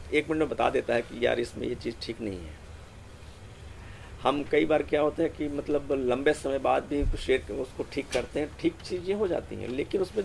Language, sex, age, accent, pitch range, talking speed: Hindi, male, 50-69, native, 95-160 Hz, 230 wpm